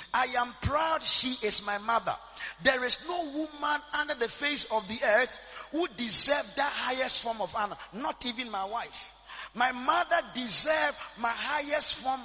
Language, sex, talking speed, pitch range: English, male, 165 wpm, 215-285 Hz